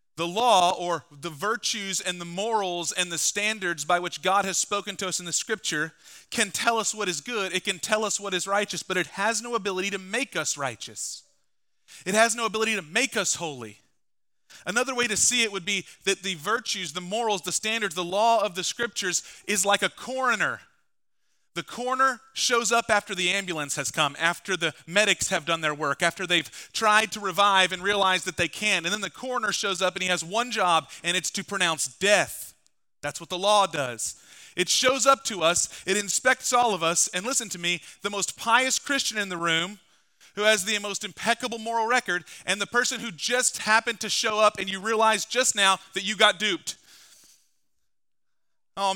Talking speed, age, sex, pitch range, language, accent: 205 wpm, 30-49, male, 180-225 Hz, English, American